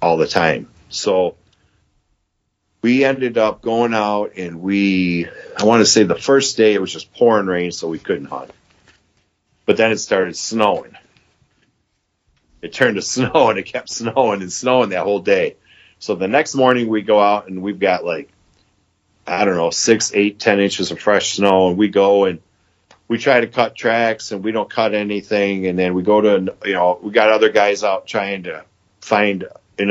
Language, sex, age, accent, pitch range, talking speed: English, male, 40-59, American, 95-110 Hz, 195 wpm